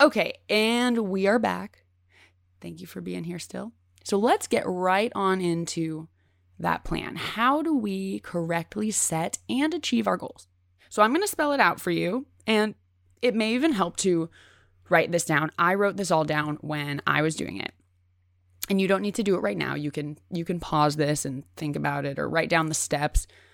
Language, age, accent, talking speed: English, 20-39, American, 200 wpm